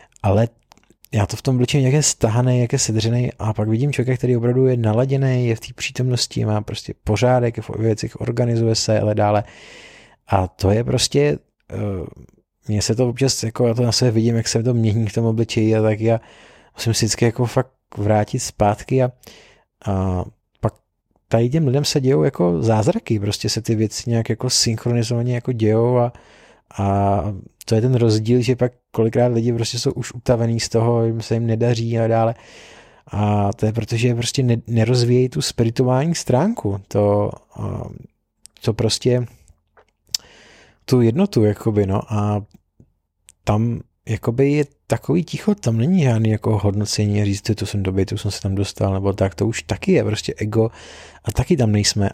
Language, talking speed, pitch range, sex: Czech, 175 wpm, 105-125 Hz, male